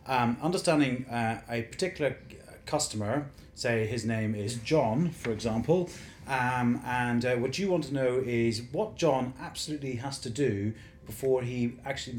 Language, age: English, 30-49